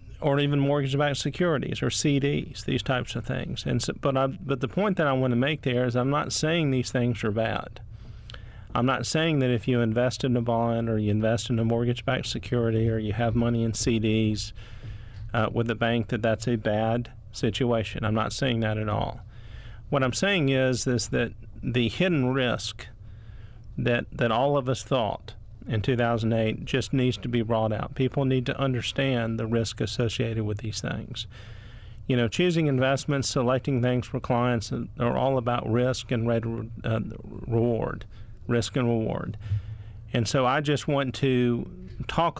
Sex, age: male, 40-59